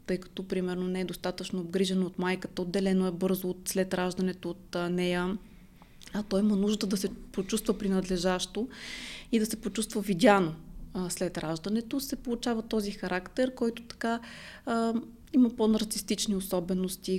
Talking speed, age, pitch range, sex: 145 wpm, 20-39, 185-225 Hz, female